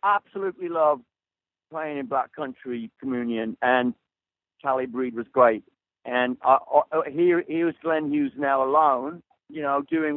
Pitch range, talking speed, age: 130-165 Hz, 150 wpm, 50-69